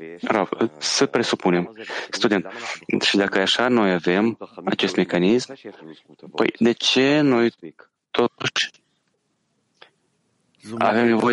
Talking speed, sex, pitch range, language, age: 95 wpm, male, 100-120 Hz, English, 30-49